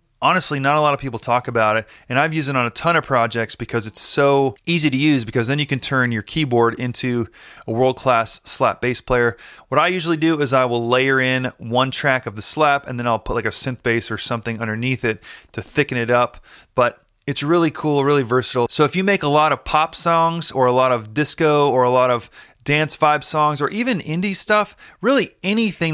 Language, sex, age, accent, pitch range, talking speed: English, male, 30-49, American, 125-160 Hz, 230 wpm